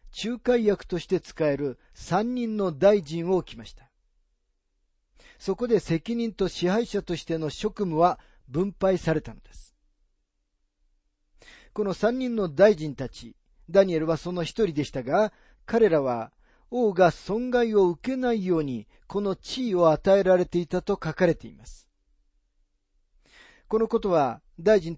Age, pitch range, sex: 40-59, 140-205 Hz, male